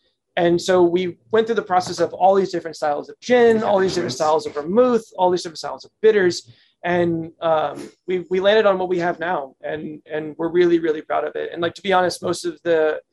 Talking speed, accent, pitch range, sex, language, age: 240 wpm, American, 160-185 Hz, male, English, 20-39